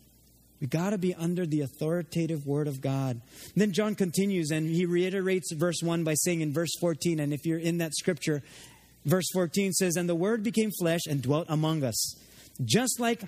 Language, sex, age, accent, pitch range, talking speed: English, male, 30-49, American, 145-185 Hz, 200 wpm